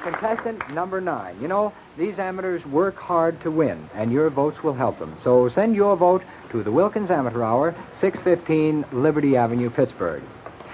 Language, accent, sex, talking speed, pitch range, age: English, American, male, 170 wpm, 135-185 Hz, 60-79